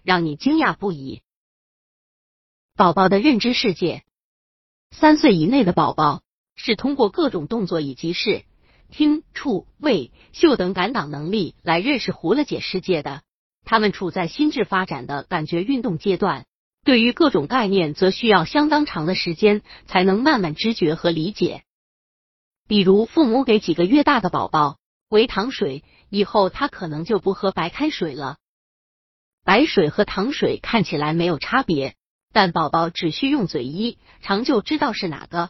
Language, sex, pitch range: Chinese, female, 170-235 Hz